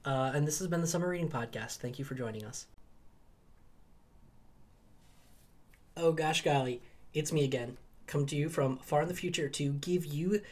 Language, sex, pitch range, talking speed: English, male, 135-175 Hz, 175 wpm